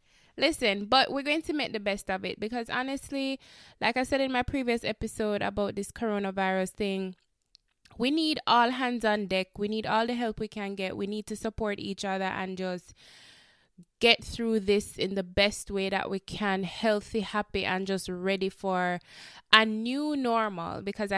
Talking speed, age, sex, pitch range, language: 185 wpm, 20-39, female, 190-225 Hz, English